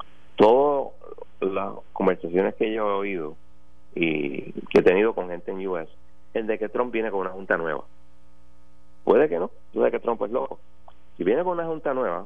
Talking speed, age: 185 wpm, 30-49